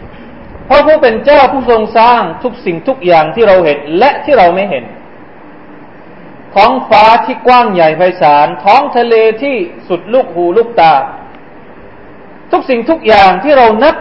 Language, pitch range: Thai, 170-260 Hz